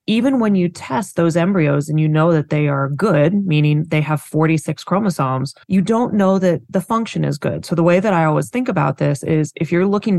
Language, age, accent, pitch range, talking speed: English, 20-39, American, 160-195 Hz, 230 wpm